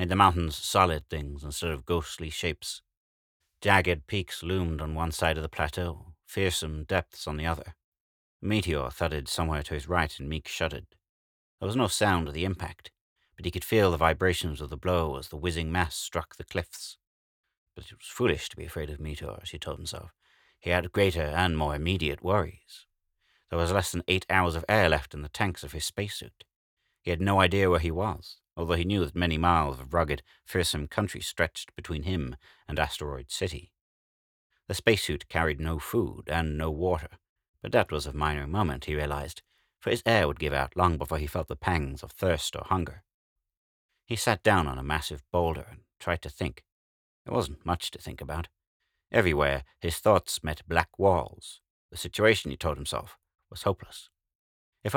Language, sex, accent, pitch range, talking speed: English, male, British, 75-90 Hz, 195 wpm